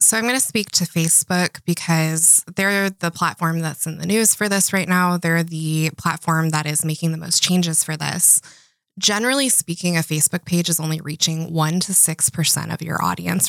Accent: American